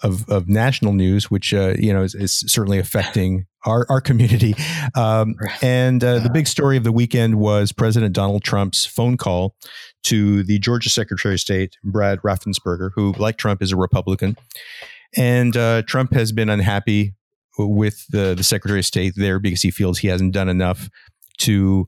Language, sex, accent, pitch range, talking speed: English, male, American, 95-115 Hz, 180 wpm